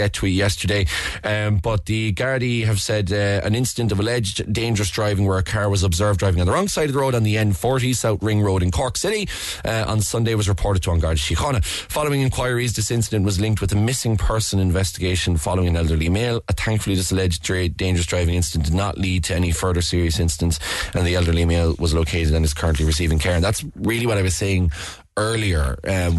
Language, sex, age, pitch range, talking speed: English, male, 20-39, 85-105 Hz, 220 wpm